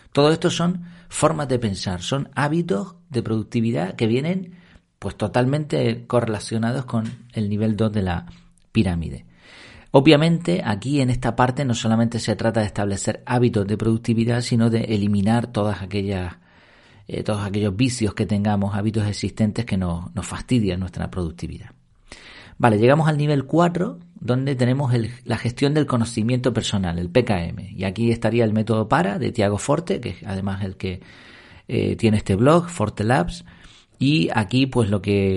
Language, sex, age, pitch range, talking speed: Spanish, male, 40-59, 105-125 Hz, 160 wpm